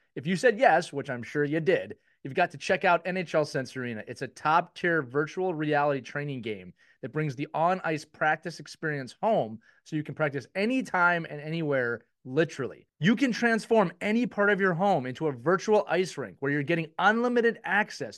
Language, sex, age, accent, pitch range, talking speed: English, male, 30-49, American, 145-200 Hz, 190 wpm